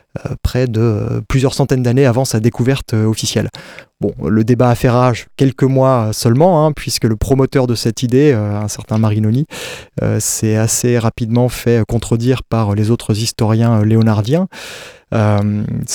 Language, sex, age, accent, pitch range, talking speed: French, male, 20-39, French, 110-130 Hz, 155 wpm